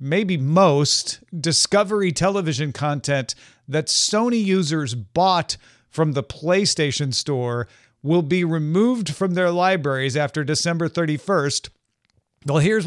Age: 40-59